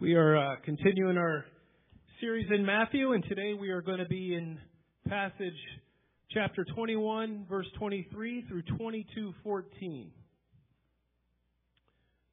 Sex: male